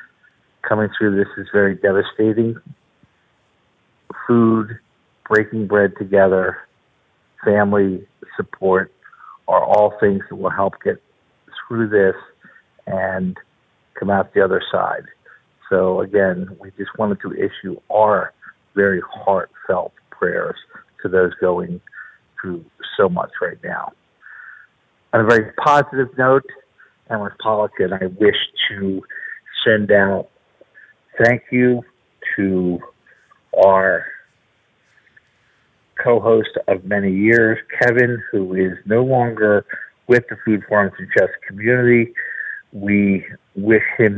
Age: 50-69